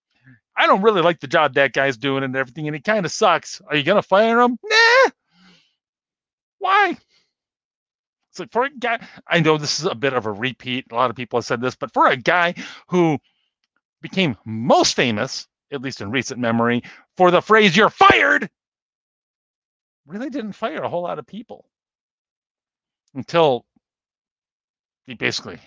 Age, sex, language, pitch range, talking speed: 50-69, male, English, 120-185 Hz, 170 wpm